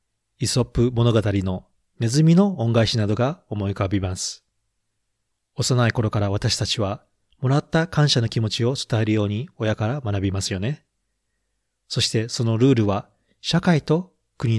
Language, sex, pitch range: Japanese, male, 105-130 Hz